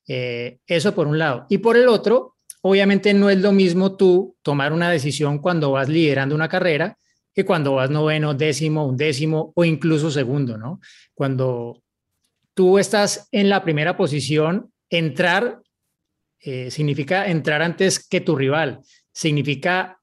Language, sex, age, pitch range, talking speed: Spanish, male, 30-49, 145-180 Hz, 145 wpm